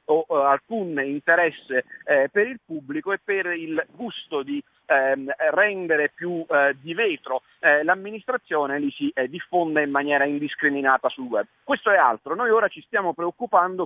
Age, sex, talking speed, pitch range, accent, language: 40-59, male, 155 wpm, 155-230 Hz, native, Italian